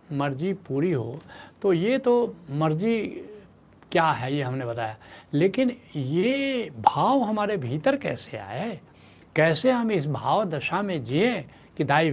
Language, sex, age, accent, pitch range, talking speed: Hindi, male, 70-89, native, 140-200 Hz, 140 wpm